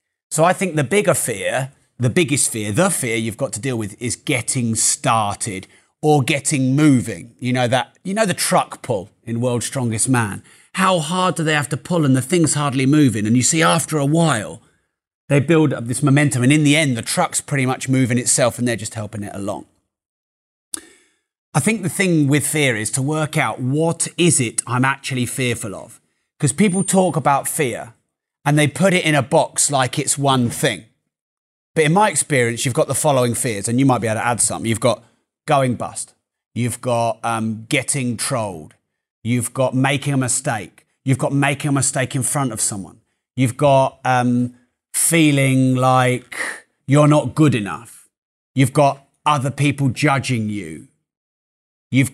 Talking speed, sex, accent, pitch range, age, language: 185 wpm, male, British, 120-150 Hz, 30-49, English